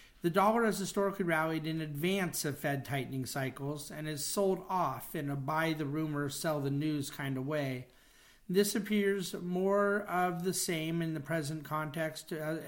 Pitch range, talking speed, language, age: 150-180 Hz, 170 wpm, English, 50-69